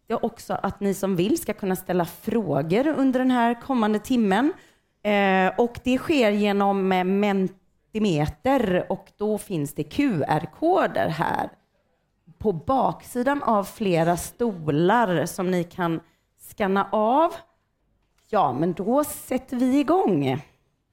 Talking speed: 125 wpm